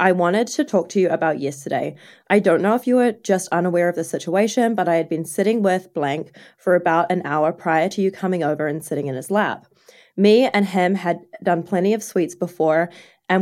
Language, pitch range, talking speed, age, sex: English, 165-205 Hz, 225 wpm, 20-39, female